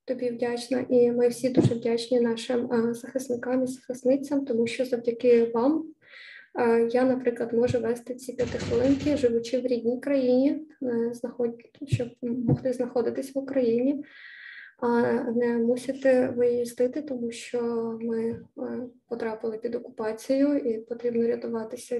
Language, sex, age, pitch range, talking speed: Ukrainian, female, 20-39, 235-260 Hz, 115 wpm